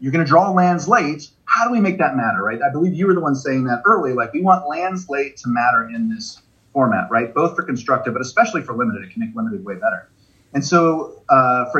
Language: English